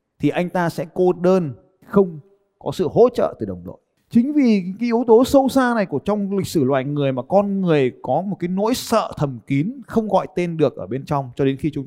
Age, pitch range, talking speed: 20-39, 140-215 Hz, 250 wpm